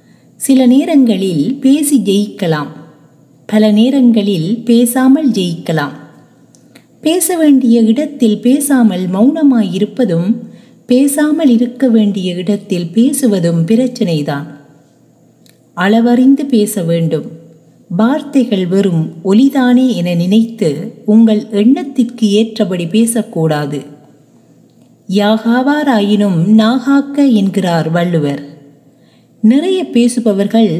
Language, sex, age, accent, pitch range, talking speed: Tamil, female, 30-49, native, 175-255 Hz, 70 wpm